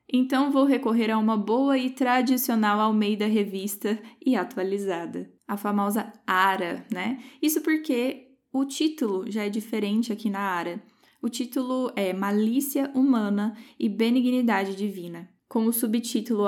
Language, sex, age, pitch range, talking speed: Portuguese, female, 10-29, 200-250 Hz, 135 wpm